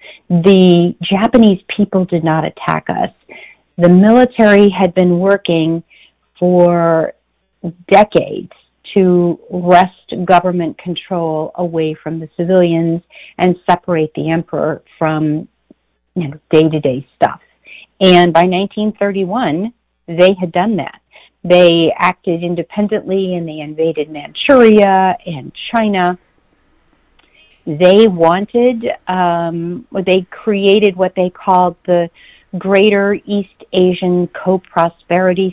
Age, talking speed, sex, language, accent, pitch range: 40-59, 100 wpm, female, English, American, 170-200 Hz